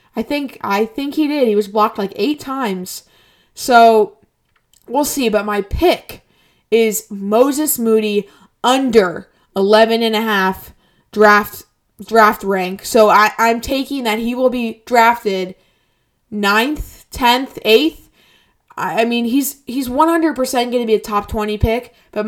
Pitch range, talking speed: 205-235 Hz, 150 wpm